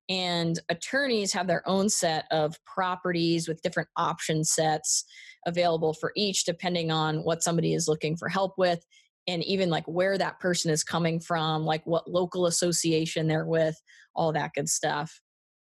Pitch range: 165-200 Hz